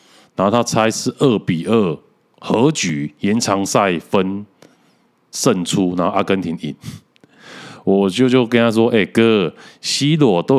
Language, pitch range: Chinese, 85-115 Hz